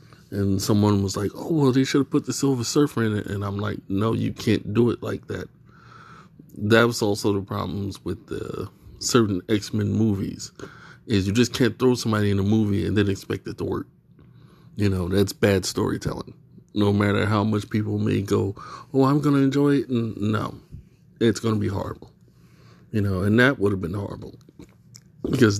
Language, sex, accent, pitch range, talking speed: English, male, American, 100-115 Hz, 200 wpm